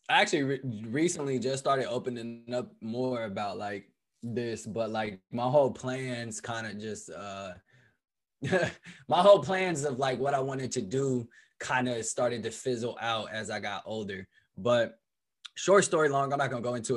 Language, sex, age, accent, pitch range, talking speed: English, male, 20-39, American, 115-145 Hz, 175 wpm